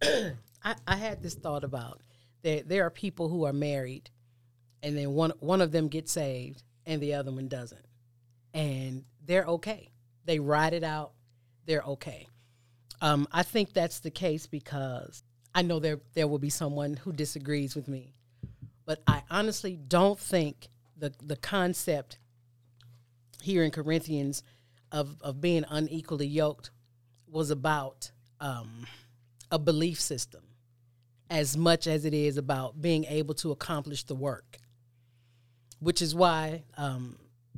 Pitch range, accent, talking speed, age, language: 120-160 Hz, American, 145 wpm, 40-59, English